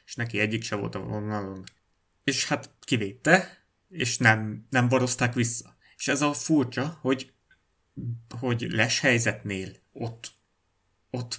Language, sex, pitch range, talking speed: Hungarian, male, 110-130 Hz, 125 wpm